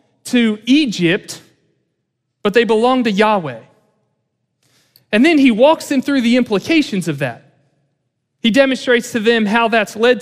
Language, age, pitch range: English, 40-59, 165-235 Hz